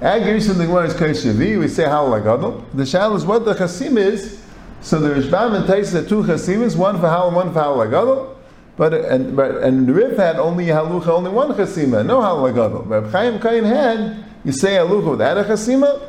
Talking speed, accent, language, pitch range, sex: 210 wpm, American, English, 145-210 Hz, male